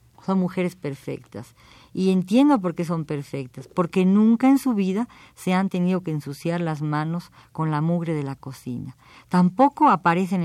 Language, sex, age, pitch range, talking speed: Spanish, female, 50-69, 145-190 Hz, 165 wpm